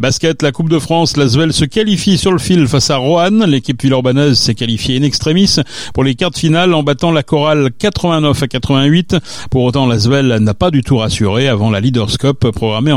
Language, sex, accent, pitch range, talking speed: French, male, French, 120-155 Hz, 200 wpm